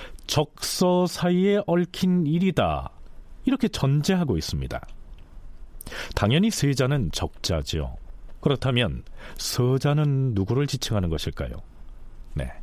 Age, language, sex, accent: 40-59, Korean, male, native